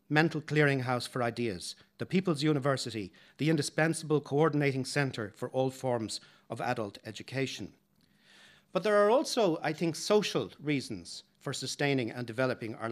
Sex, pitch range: male, 125-155 Hz